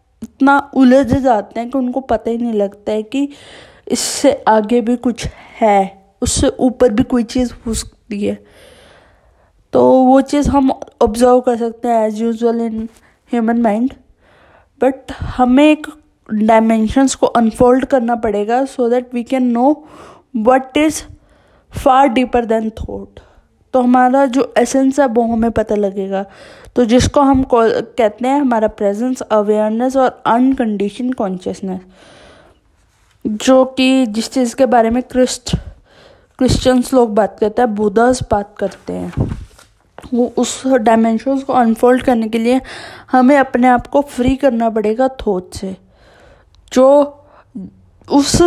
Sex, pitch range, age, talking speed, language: female, 220-260 Hz, 20-39, 140 wpm, Hindi